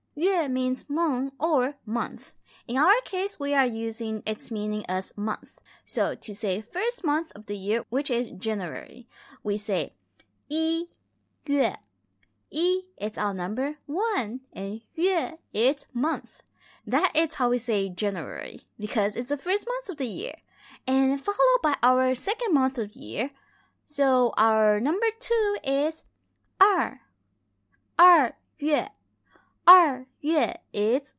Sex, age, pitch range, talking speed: female, 20-39, 215-330 Hz, 135 wpm